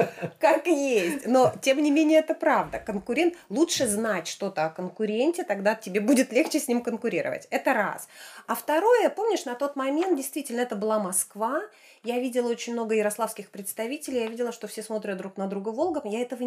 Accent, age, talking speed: native, 30-49, 180 wpm